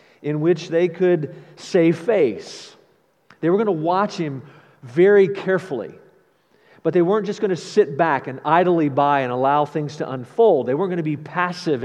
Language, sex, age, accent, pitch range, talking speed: English, male, 50-69, American, 150-190 Hz, 180 wpm